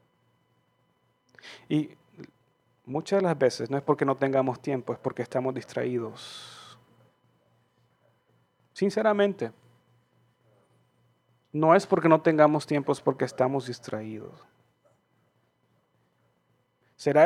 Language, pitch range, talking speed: Spanish, 125-170 Hz, 95 wpm